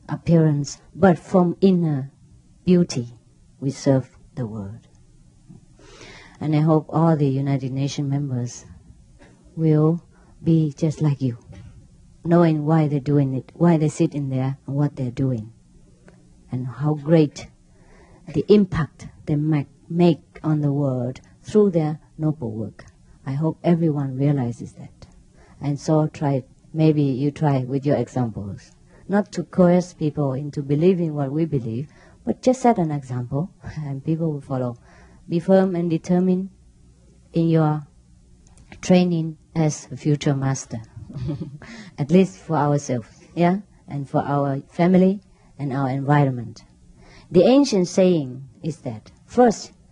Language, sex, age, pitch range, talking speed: English, female, 50-69, 135-170 Hz, 135 wpm